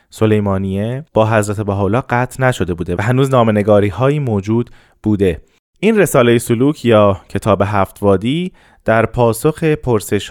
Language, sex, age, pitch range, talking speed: Persian, male, 30-49, 105-130 Hz, 130 wpm